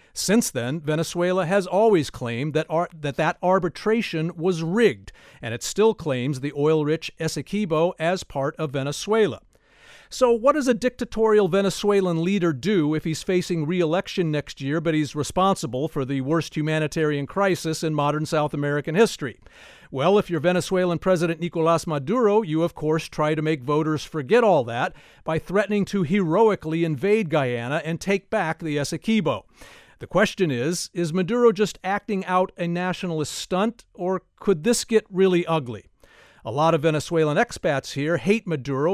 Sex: male